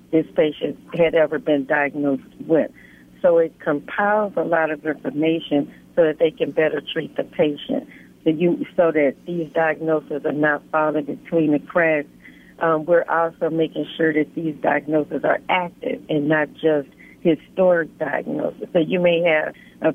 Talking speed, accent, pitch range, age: 160 wpm, American, 150-170 Hz, 60-79